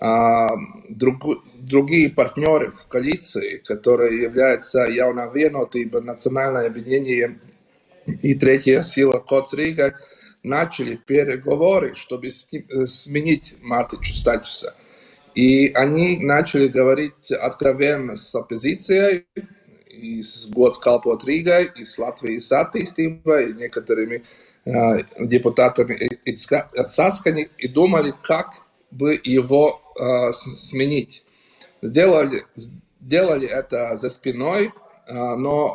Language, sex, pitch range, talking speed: Russian, male, 125-150 Hz, 90 wpm